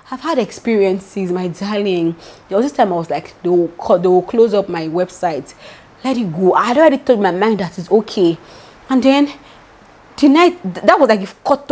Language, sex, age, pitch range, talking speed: English, female, 30-49, 195-300 Hz, 215 wpm